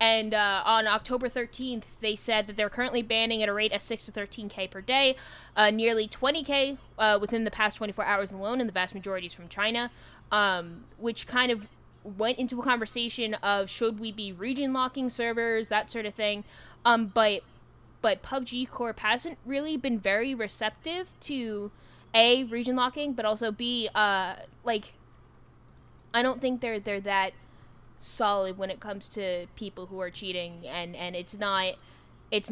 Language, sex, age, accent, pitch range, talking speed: English, female, 10-29, American, 205-245 Hz, 170 wpm